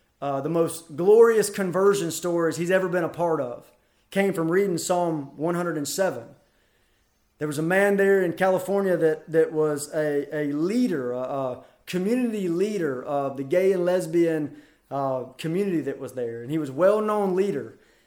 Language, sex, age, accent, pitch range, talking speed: English, male, 30-49, American, 145-205 Hz, 165 wpm